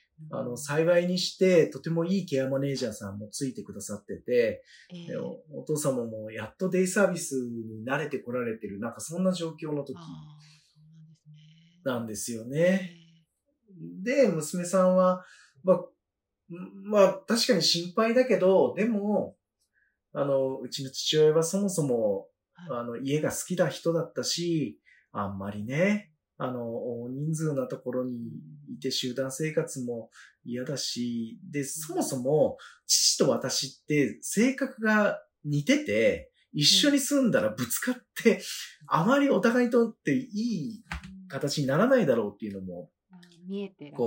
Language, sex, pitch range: Japanese, male, 130-195 Hz